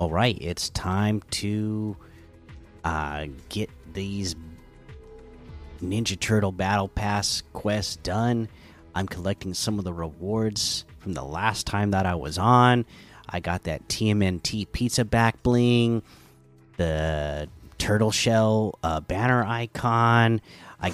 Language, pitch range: English, 85-110 Hz